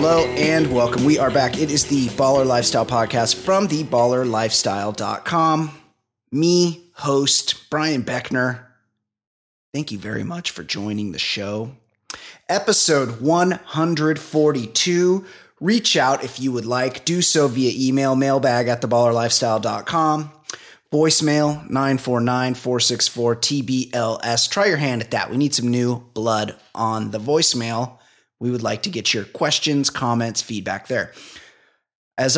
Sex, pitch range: male, 115-150 Hz